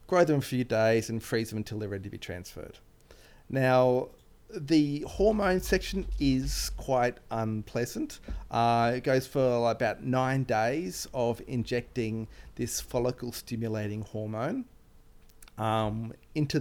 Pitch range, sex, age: 110-130 Hz, male, 30-49